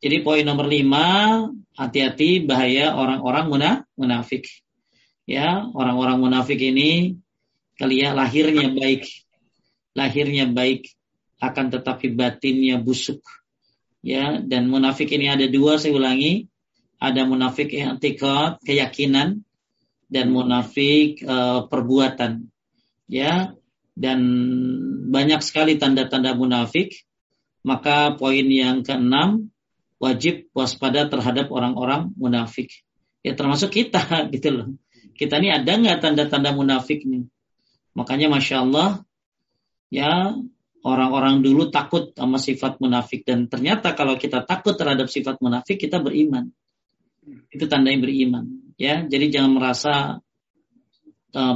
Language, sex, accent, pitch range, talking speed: Indonesian, male, native, 130-155 Hz, 110 wpm